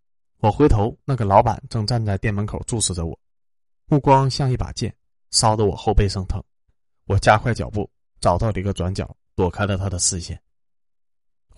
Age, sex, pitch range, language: 20-39, male, 90-115 Hz, Chinese